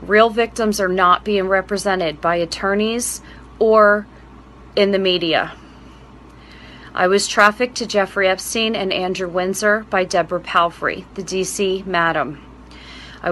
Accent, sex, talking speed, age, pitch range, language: American, female, 125 wpm, 30-49, 135-200 Hz, English